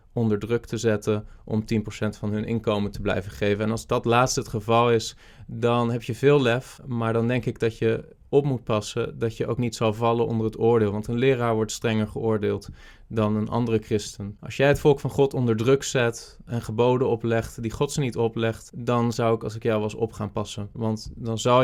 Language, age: Dutch, 20-39